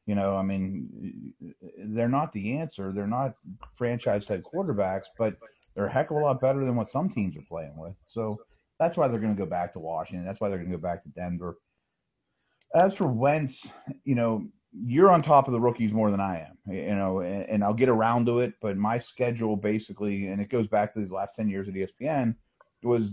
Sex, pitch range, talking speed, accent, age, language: male, 95-120 Hz, 225 wpm, American, 30-49, English